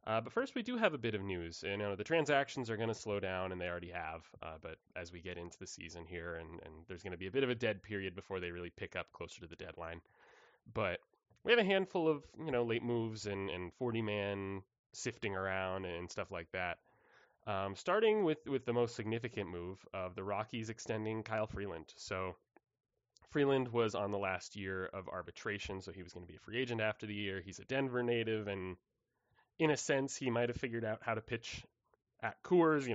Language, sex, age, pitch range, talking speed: English, male, 20-39, 95-120 Hz, 230 wpm